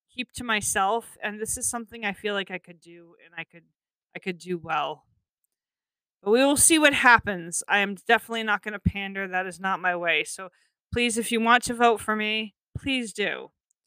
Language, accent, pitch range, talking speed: English, American, 185-225 Hz, 210 wpm